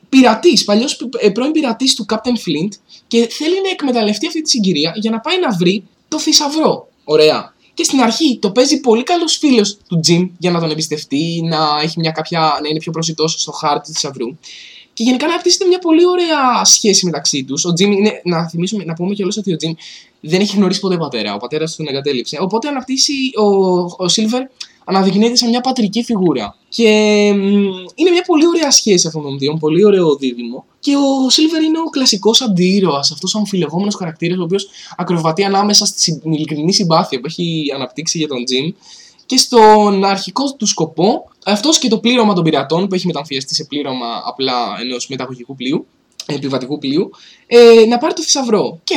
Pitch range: 150-235 Hz